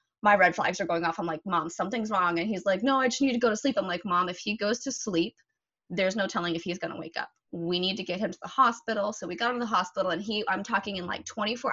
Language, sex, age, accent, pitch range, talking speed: English, female, 20-39, American, 175-225 Hz, 310 wpm